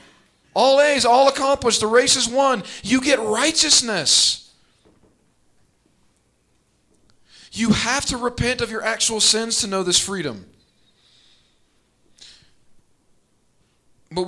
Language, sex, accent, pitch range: English, male, American, 130-185 Hz